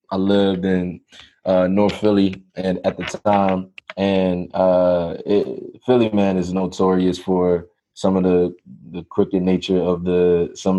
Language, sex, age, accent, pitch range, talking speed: English, male, 20-39, American, 95-110 Hz, 150 wpm